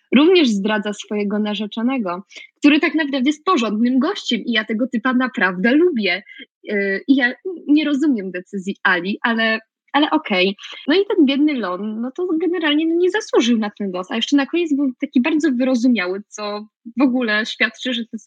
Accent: native